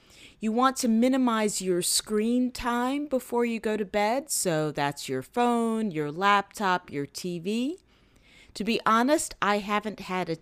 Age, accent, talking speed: 40-59, American, 155 wpm